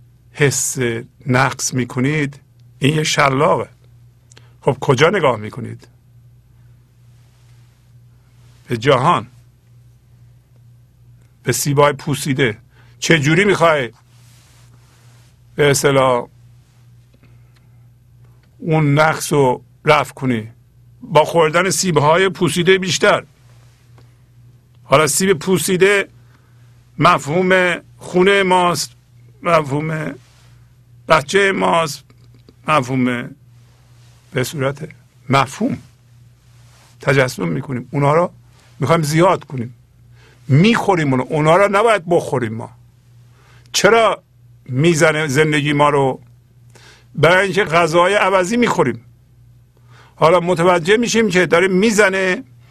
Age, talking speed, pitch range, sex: 50-69, 80 wpm, 120-165 Hz, male